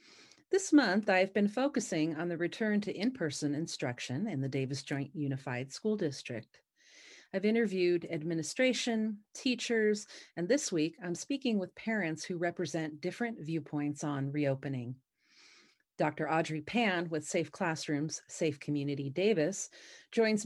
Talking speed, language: 130 wpm, English